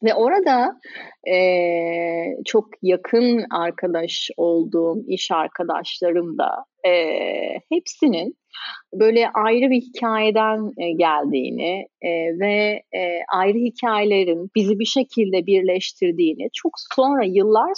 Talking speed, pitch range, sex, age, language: 85 wpm, 180-260 Hz, female, 30-49, Turkish